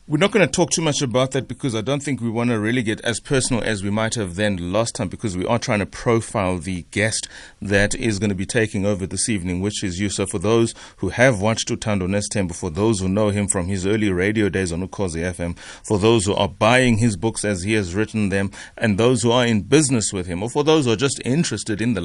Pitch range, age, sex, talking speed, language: 95-115 Hz, 30-49, male, 265 wpm, English